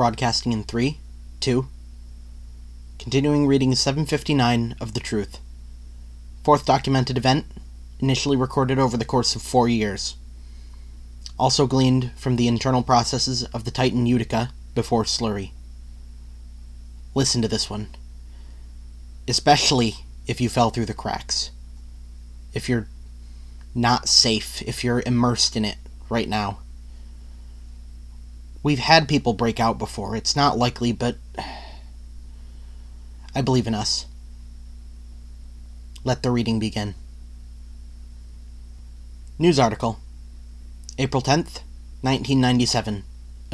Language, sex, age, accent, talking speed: English, male, 30-49, American, 110 wpm